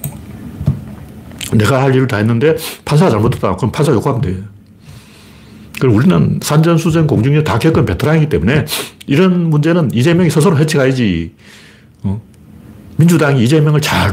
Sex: male